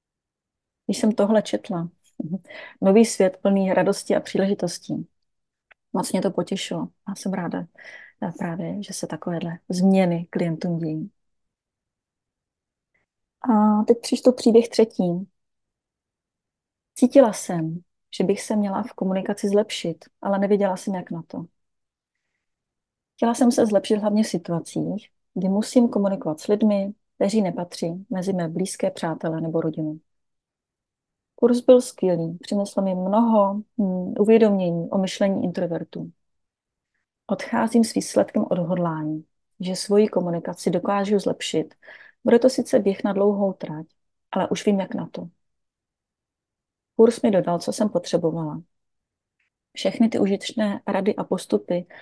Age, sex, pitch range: 30-49, female, 175-215 Hz